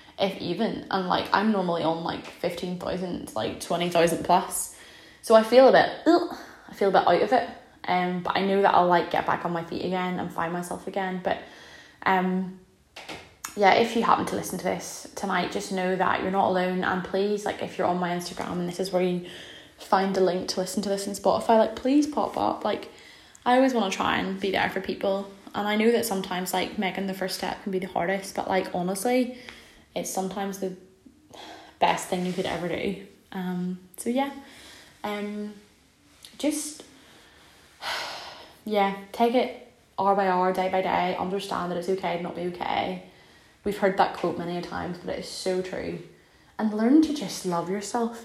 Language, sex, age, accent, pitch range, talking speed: English, female, 10-29, British, 185-220 Hz, 200 wpm